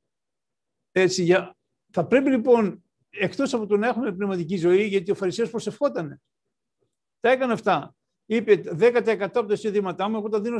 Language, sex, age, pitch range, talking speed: Greek, male, 60-79, 165-205 Hz, 155 wpm